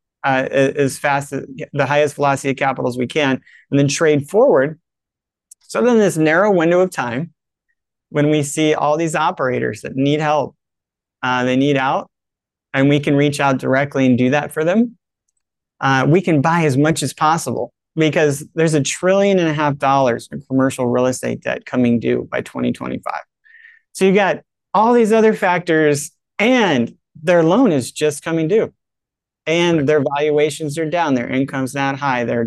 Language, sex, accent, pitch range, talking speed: English, male, American, 130-155 Hz, 175 wpm